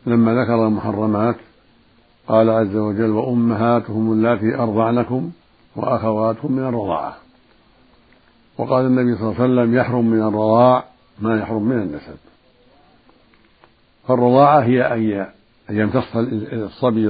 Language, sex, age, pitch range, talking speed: Arabic, male, 60-79, 110-125 Hz, 105 wpm